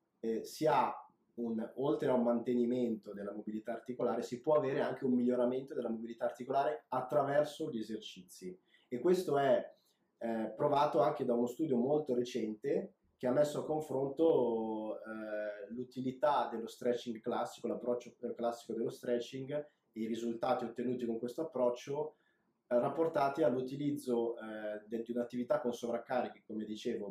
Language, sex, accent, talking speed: Italian, male, native, 135 wpm